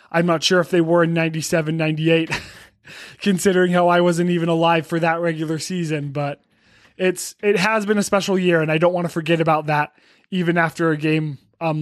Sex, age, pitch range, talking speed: male, 20-39, 165-195 Hz, 200 wpm